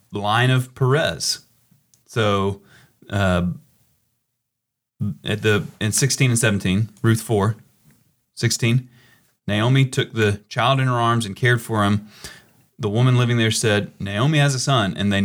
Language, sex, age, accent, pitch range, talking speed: English, male, 30-49, American, 105-130 Hz, 140 wpm